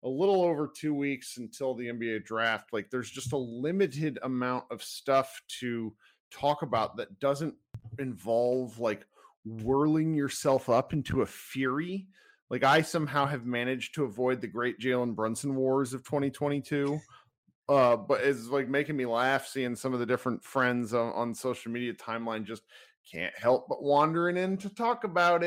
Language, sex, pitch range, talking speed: English, male, 120-150 Hz, 165 wpm